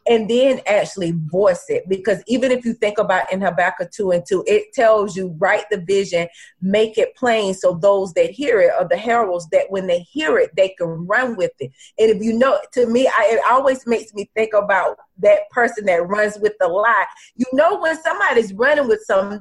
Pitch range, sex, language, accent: 195-255 Hz, female, English, American